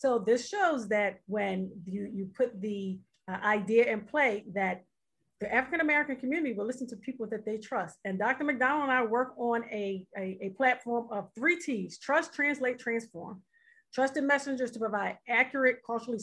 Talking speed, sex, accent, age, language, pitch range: 170 wpm, female, American, 40-59, English, 215-295 Hz